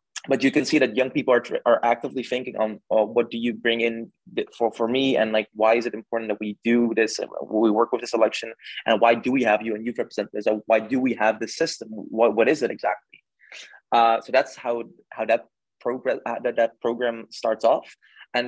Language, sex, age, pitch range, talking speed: English, male, 20-39, 110-120 Hz, 235 wpm